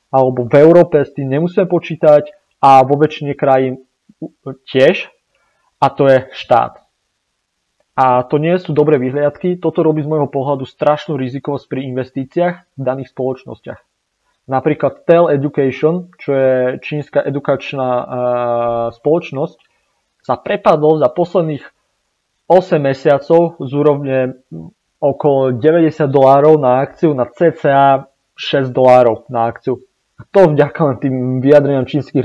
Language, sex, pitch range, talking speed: Slovak, male, 130-155 Hz, 125 wpm